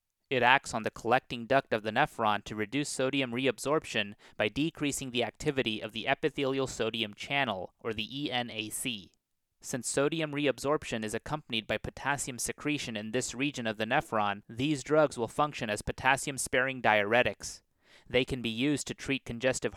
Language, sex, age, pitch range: English, male, 30-49, 110-135 Hz